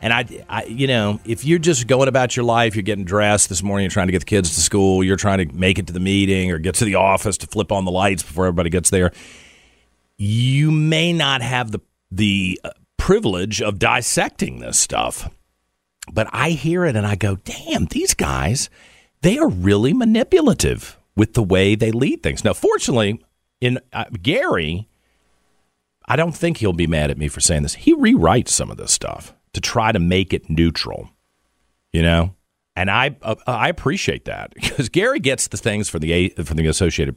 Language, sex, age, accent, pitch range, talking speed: English, male, 50-69, American, 80-110 Hz, 200 wpm